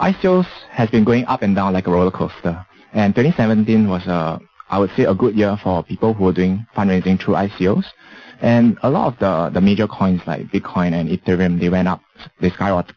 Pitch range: 90-110 Hz